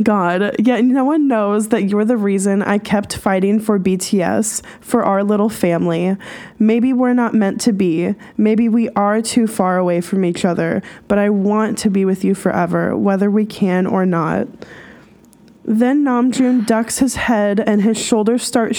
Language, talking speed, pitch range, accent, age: English, 180 wpm, 195-230 Hz, American, 10-29